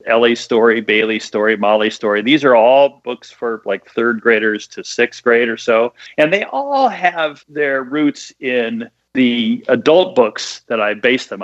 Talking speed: 175 wpm